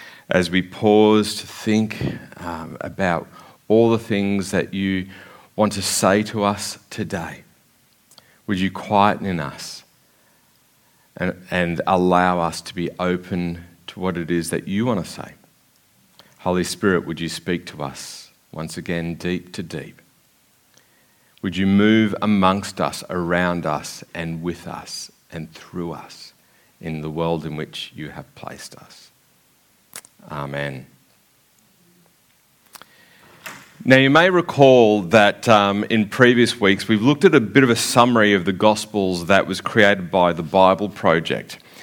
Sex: male